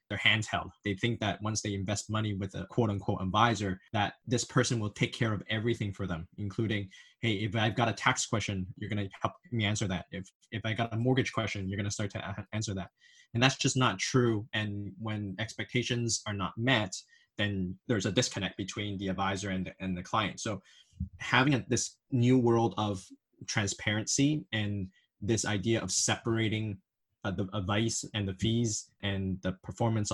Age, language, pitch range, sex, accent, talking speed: 20-39, English, 100-115 Hz, male, American, 200 wpm